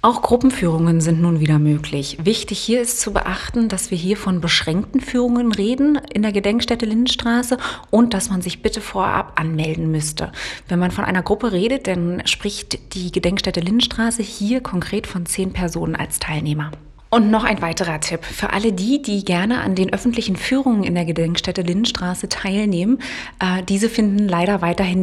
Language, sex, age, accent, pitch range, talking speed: German, female, 30-49, German, 185-240 Hz, 170 wpm